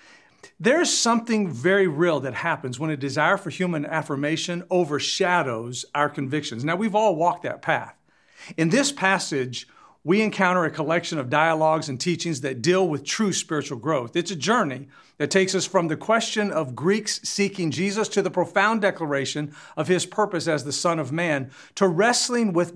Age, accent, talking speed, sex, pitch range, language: 50-69, American, 175 wpm, male, 145-190 Hz, English